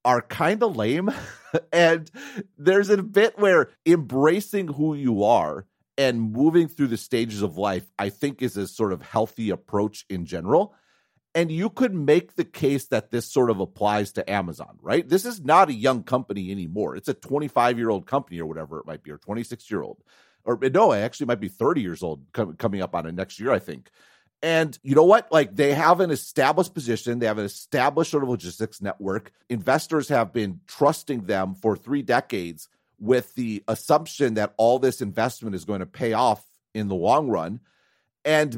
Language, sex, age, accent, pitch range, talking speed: English, male, 40-59, American, 105-150 Hz, 195 wpm